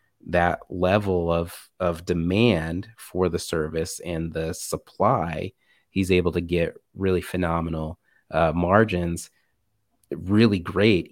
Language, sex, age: English, male, 30-49